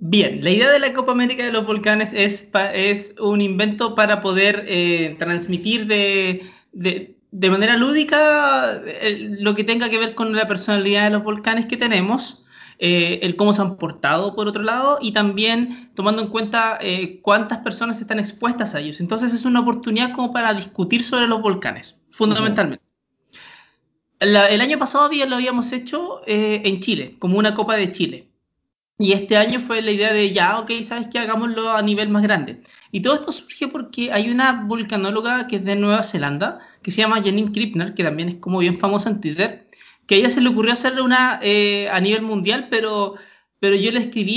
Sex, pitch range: male, 200-235 Hz